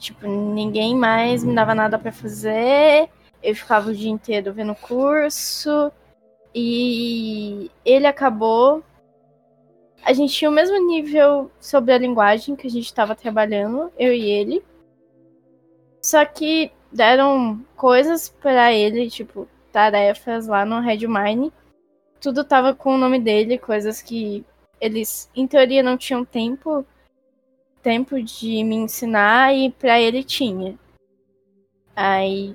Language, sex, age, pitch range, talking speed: Portuguese, female, 10-29, 215-260 Hz, 125 wpm